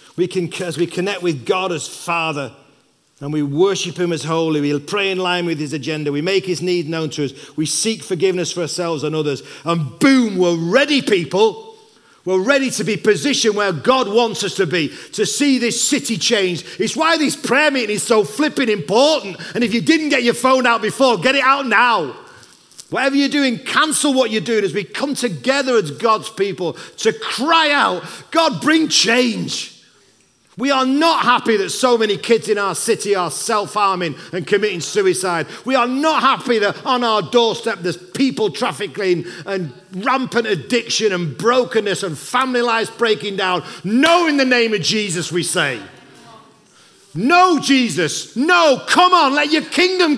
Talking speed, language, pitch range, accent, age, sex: 180 wpm, English, 180-260 Hz, British, 40-59, male